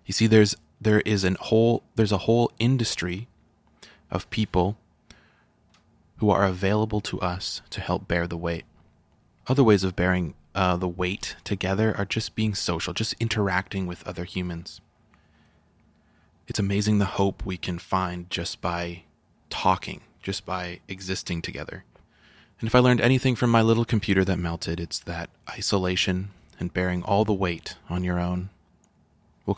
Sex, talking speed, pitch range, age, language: male, 155 wpm, 85-105 Hz, 20-39, English